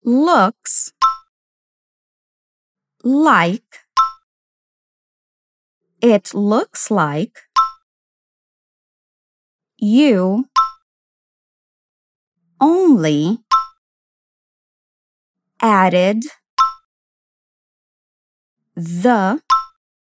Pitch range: 215-300 Hz